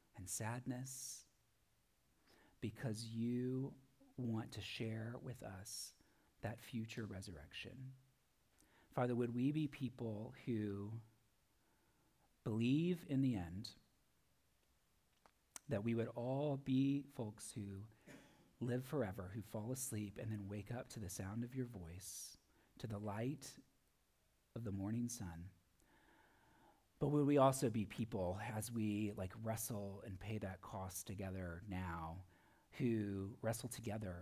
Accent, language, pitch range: American, English, 100-120 Hz